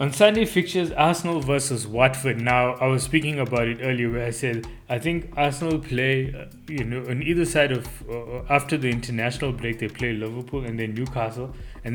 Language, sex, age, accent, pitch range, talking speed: English, male, 20-39, Indian, 115-140 Hz, 190 wpm